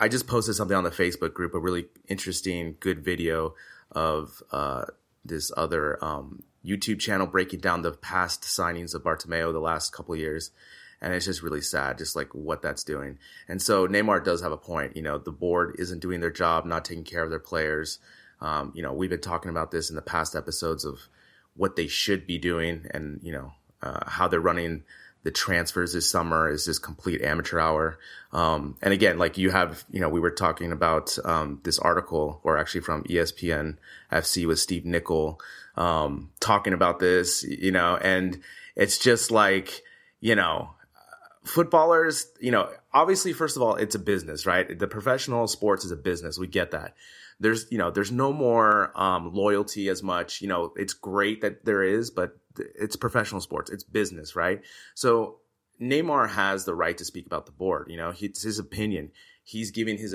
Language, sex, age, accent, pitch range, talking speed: English, male, 30-49, American, 80-95 Hz, 195 wpm